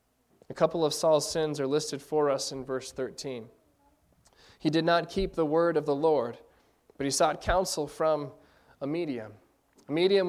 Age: 20-39